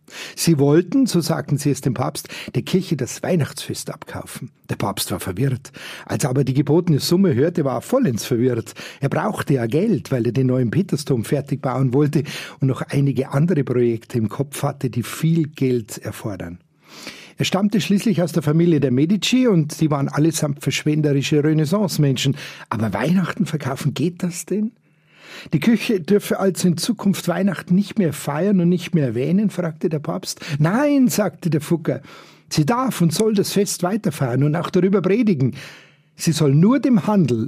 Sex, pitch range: male, 135-180 Hz